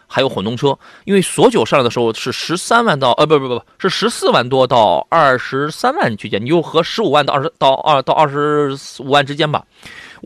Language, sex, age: Chinese, male, 30-49